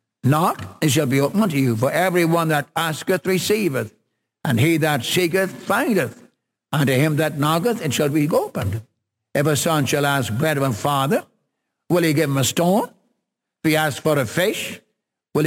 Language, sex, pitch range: English, male, 140-185 Hz